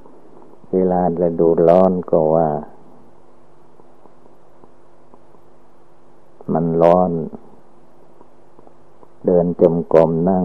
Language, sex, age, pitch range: Thai, male, 60-79, 80-90 Hz